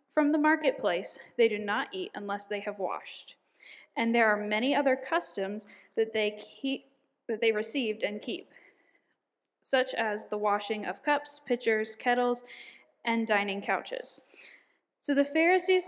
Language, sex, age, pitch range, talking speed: English, female, 10-29, 220-285 Hz, 145 wpm